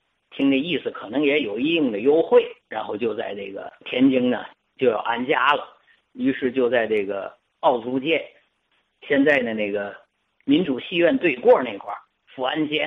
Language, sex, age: Chinese, male, 50-69